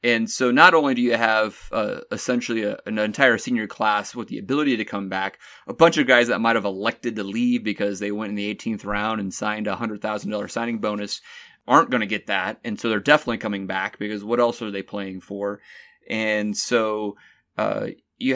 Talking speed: 210 wpm